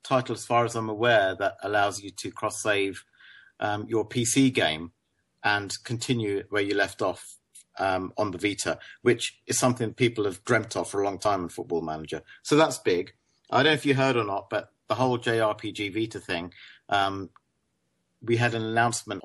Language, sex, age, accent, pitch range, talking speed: English, male, 50-69, British, 105-130 Hz, 185 wpm